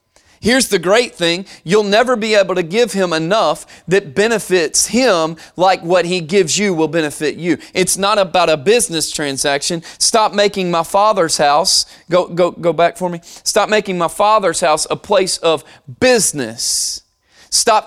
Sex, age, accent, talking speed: male, 30-49, American, 170 wpm